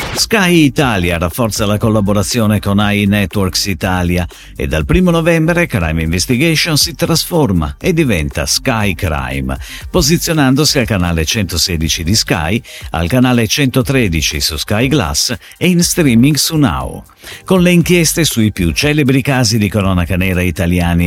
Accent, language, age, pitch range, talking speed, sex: native, Italian, 50-69, 85-135 Hz, 135 wpm, male